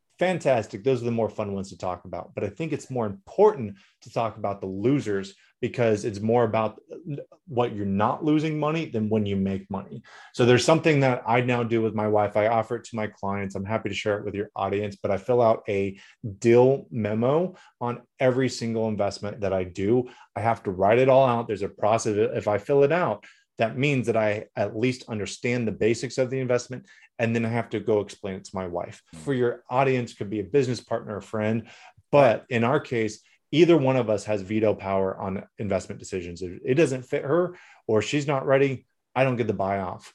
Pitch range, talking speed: 105-125 Hz, 225 wpm